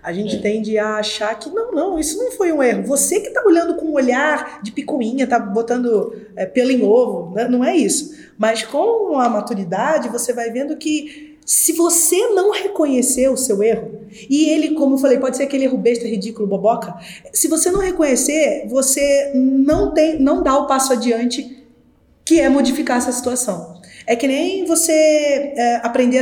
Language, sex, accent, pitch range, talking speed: Portuguese, female, Brazilian, 235-330 Hz, 190 wpm